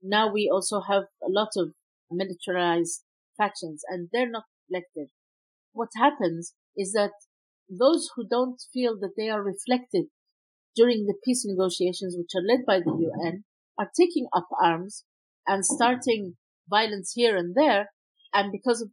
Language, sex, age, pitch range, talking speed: English, female, 50-69, 185-245 Hz, 150 wpm